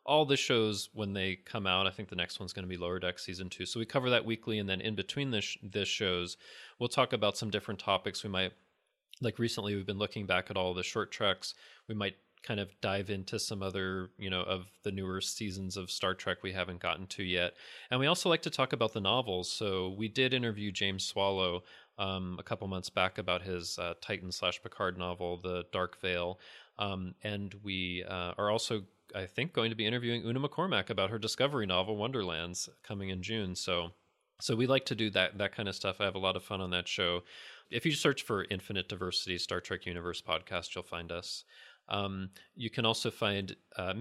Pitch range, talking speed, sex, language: 90-110 Hz, 225 wpm, male, English